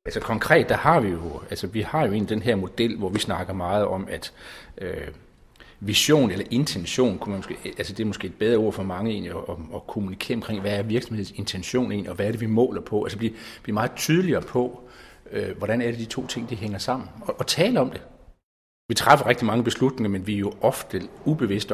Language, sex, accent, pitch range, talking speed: Danish, male, native, 100-125 Hz, 230 wpm